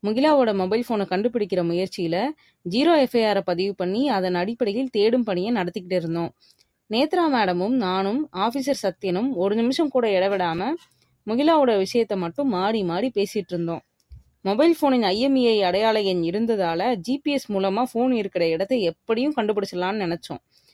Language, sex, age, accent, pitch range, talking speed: Tamil, female, 20-39, native, 180-250 Hz, 125 wpm